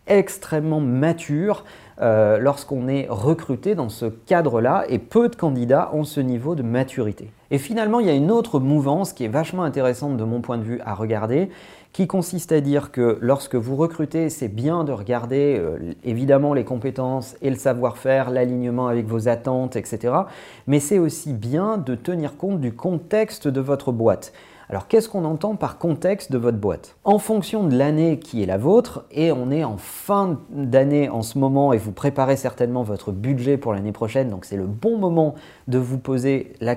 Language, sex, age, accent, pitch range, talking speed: French, male, 40-59, French, 120-165 Hz, 190 wpm